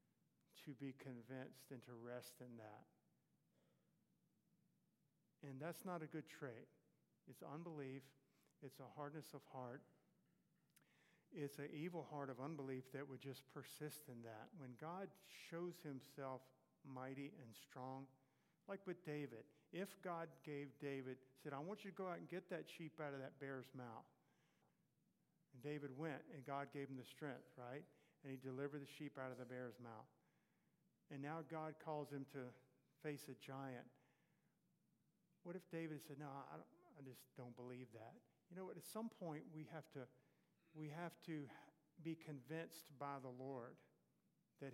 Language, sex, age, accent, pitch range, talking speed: English, male, 50-69, American, 130-165 Hz, 165 wpm